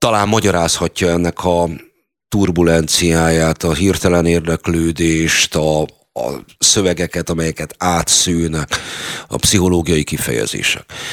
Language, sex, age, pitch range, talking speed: Hungarian, male, 50-69, 80-95 Hz, 85 wpm